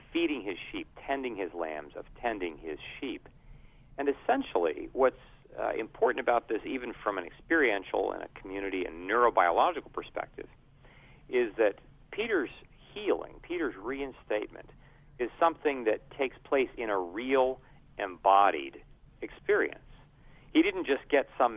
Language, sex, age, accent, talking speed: English, male, 50-69, American, 135 wpm